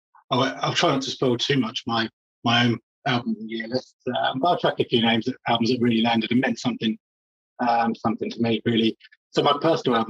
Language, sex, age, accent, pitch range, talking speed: English, male, 20-39, British, 115-130 Hz, 245 wpm